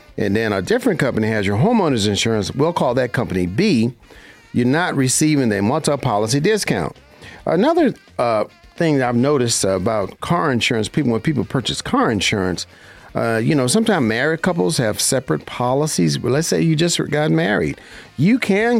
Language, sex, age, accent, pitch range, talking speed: English, male, 50-69, American, 110-155 Hz, 175 wpm